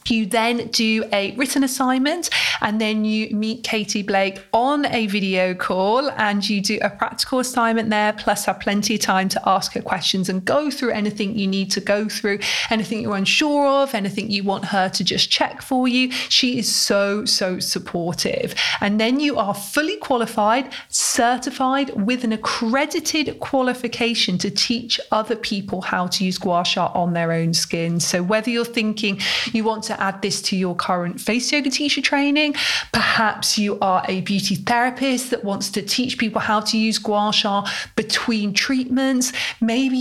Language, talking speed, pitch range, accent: English, 175 wpm, 200-250 Hz, British